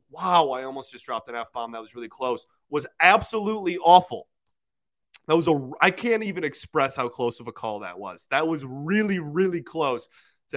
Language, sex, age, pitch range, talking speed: English, male, 30-49, 130-165 Hz, 200 wpm